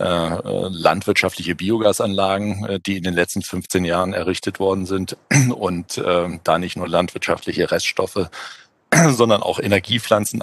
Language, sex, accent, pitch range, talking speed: German, male, German, 90-100 Hz, 120 wpm